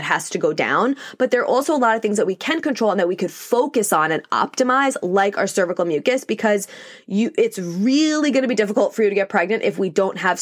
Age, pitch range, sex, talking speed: 20-39, 195-255 Hz, female, 260 wpm